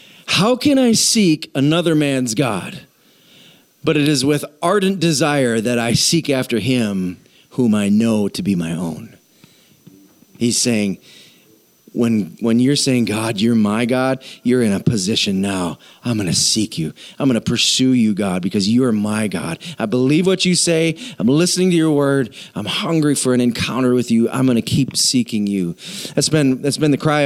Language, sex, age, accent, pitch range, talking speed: English, male, 40-59, American, 120-155 Hz, 185 wpm